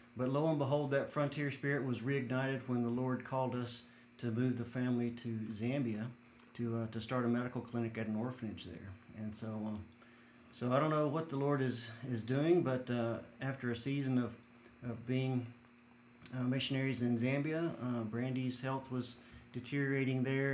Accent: American